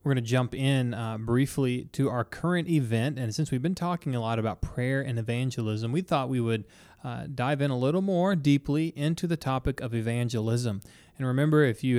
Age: 20-39